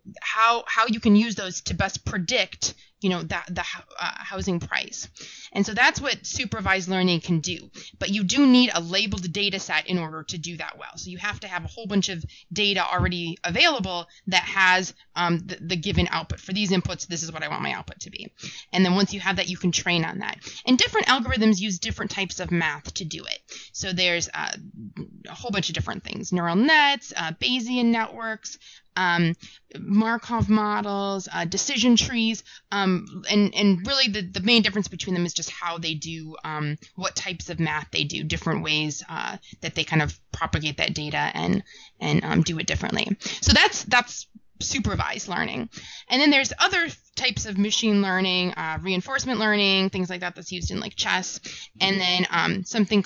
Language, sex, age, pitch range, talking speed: English, female, 20-39, 175-215 Hz, 200 wpm